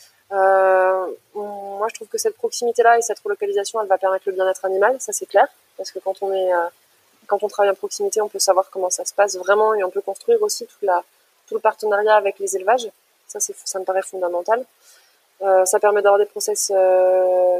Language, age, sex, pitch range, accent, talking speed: French, 20-39, female, 190-220 Hz, French, 220 wpm